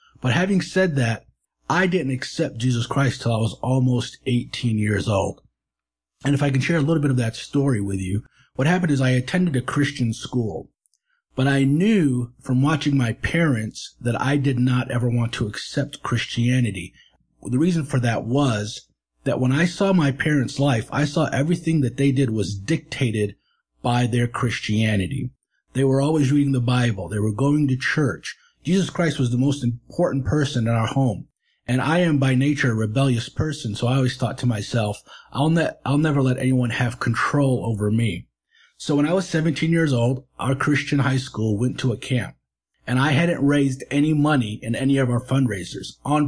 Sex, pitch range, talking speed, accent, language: male, 115-145 Hz, 190 wpm, American, English